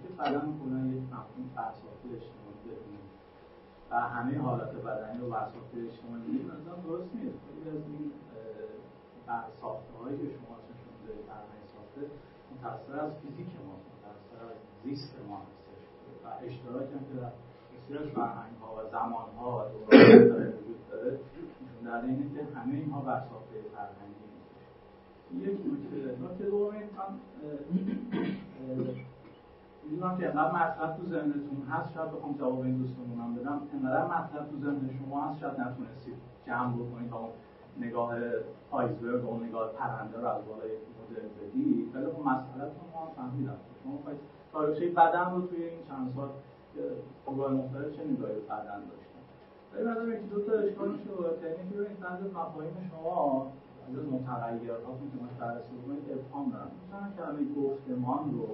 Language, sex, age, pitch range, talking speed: Persian, male, 50-69, 120-165 Hz, 100 wpm